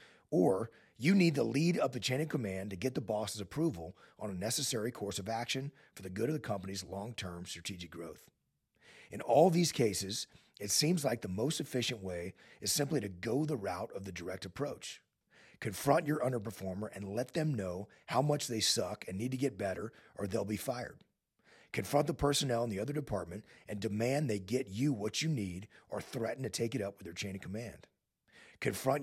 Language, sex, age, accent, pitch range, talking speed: English, male, 40-59, American, 100-145 Hz, 205 wpm